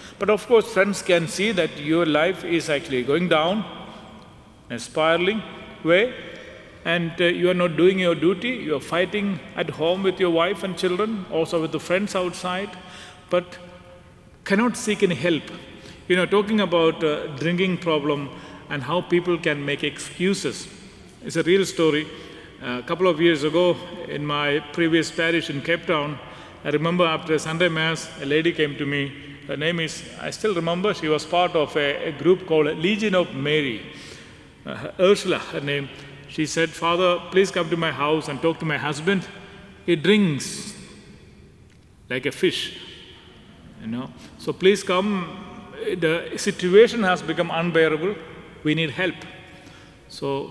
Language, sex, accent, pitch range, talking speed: English, male, Indian, 155-185 Hz, 165 wpm